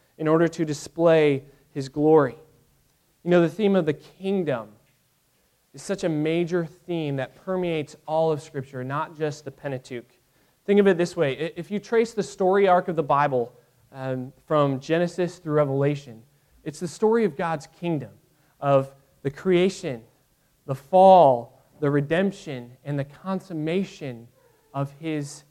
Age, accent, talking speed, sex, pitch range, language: 20-39, American, 150 wpm, male, 135-170 Hz, English